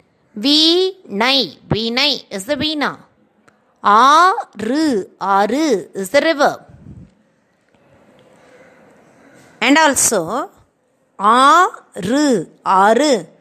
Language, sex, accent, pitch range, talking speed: Tamil, female, native, 230-290 Hz, 80 wpm